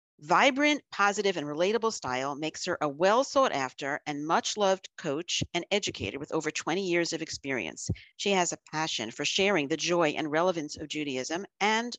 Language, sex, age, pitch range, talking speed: English, female, 50-69, 150-205 Hz, 165 wpm